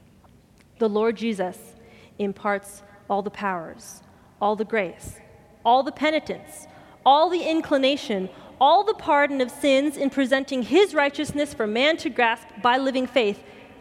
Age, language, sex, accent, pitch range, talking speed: 30-49, English, female, American, 210-265 Hz, 140 wpm